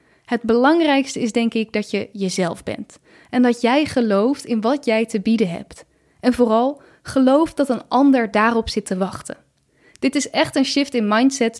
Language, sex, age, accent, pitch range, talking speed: Dutch, female, 10-29, Dutch, 220-275 Hz, 185 wpm